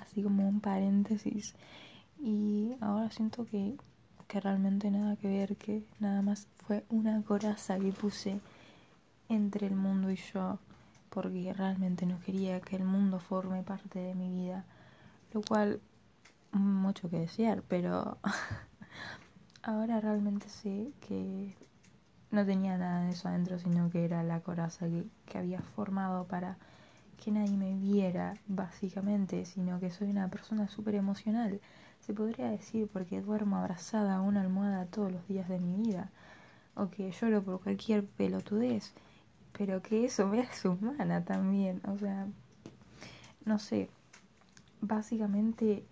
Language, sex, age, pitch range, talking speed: Spanish, female, 20-39, 190-215 Hz, 140 wpm